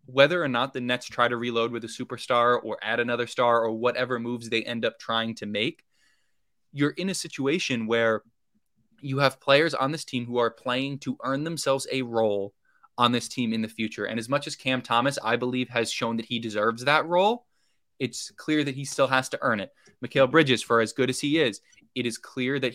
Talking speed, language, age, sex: 225 wpm, English, 20-39, male